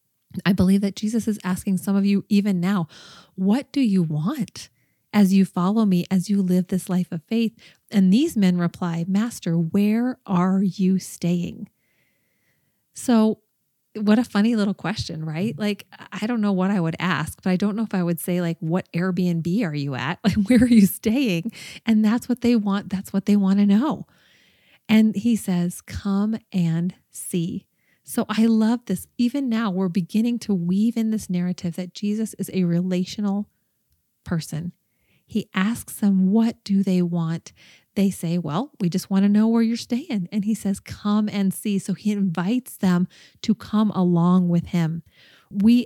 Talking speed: 180 wpm